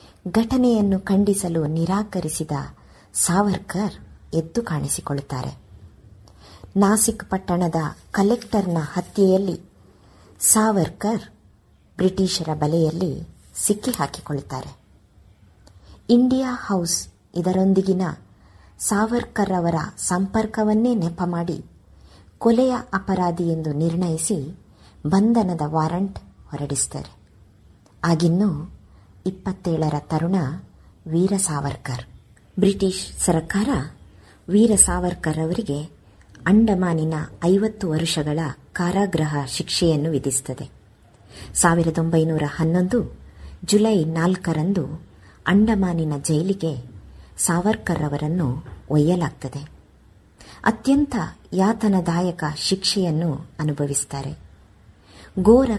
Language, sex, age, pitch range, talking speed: Kannada, male, 50-69, 145-195 Hz, 60 wpm